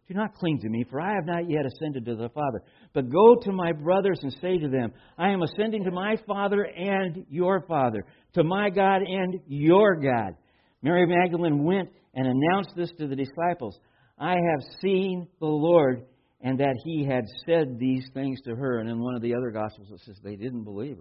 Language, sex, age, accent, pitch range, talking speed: English, male, 60-79, American, 115-160 Hz, 210 wpm